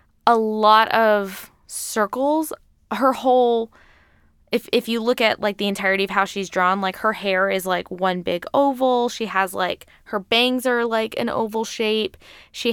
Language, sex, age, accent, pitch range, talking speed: English, female, 10-29, American, 190-235 Hz, 175 wpm